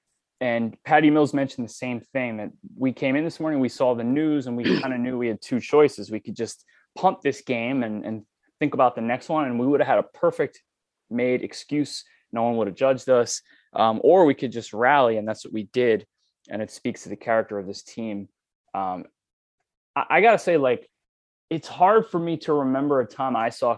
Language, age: English, 20-39